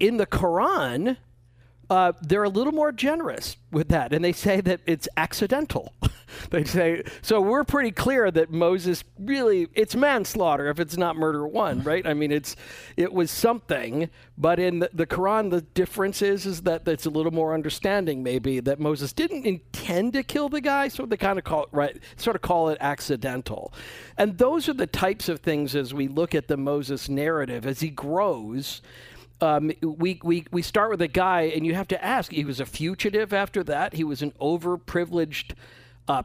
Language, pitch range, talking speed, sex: English, 140-190 Hz, 190 wpm, male